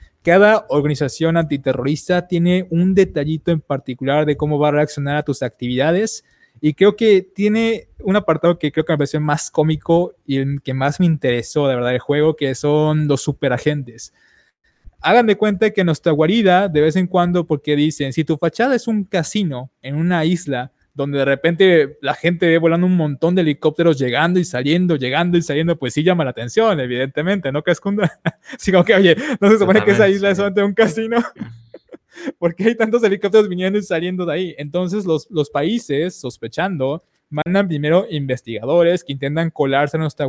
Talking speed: 190 wpm